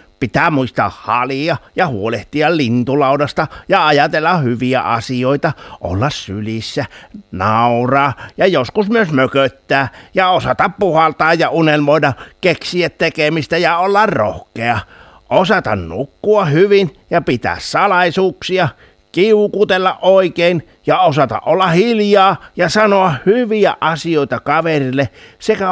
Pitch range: 115-185 Hz